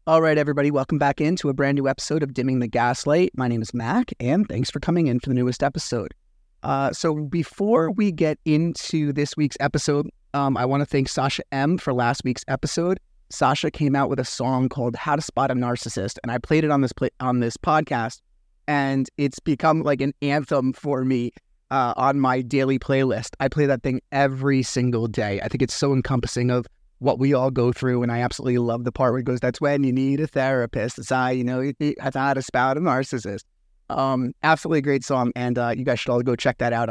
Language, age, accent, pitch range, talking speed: English, 30-49, American, 120-150 Hz, 230 wpm